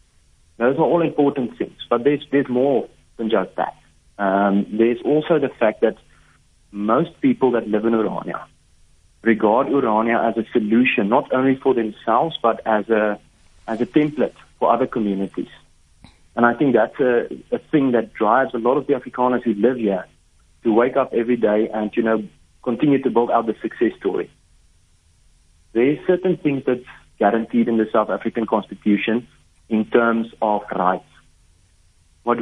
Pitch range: 100-130 Hz